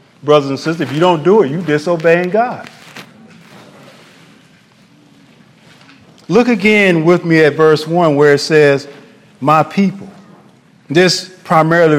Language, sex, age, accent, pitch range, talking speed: English, male, 40-59, American, 145-180 Hz, 125 wpm